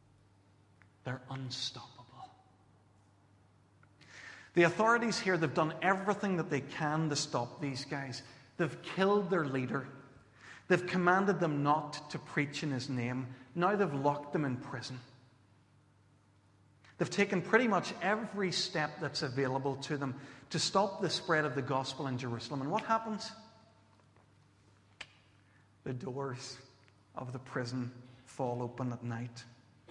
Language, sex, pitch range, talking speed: English, male, 110-150 Hz, 130 wpm